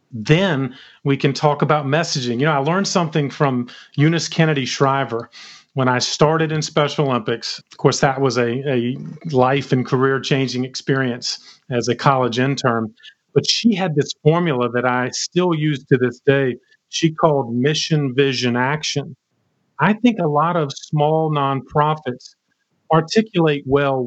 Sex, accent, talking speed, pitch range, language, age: male, American, 155 wpm, 125-155 Hz, English, 40-59